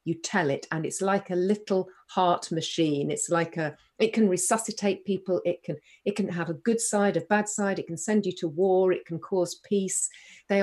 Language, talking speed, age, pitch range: English, 220 wpm, 40-59, 165-205 Hz